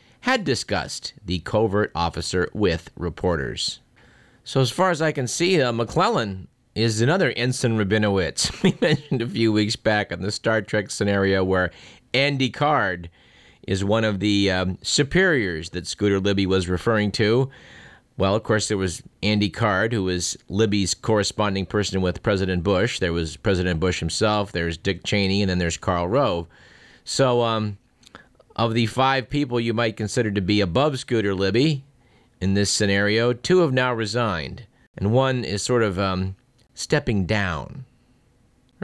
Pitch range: 95-120 Hz